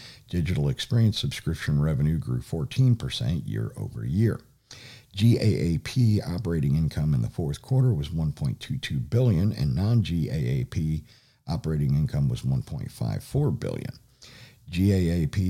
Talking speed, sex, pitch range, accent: 95 wpm, male, 85-130 Hz, American